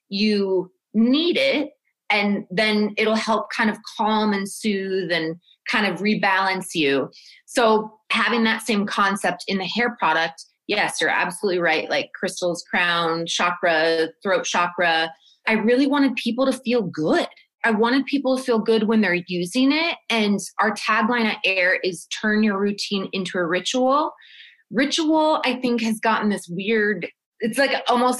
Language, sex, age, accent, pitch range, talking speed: English, female, 20-39, American, 195-255 Hz, 160 wpm